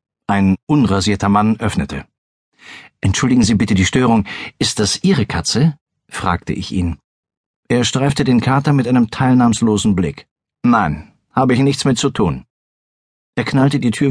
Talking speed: 150 wpm